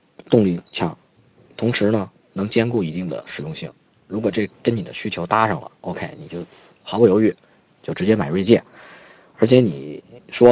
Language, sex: Chinese, male